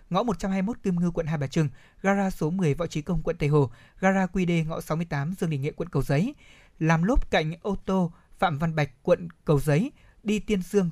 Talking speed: 230 wpm